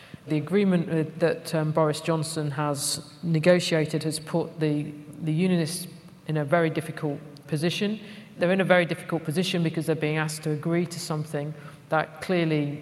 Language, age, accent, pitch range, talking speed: English, 40-59, British, 150-165 Hz, 160 wpm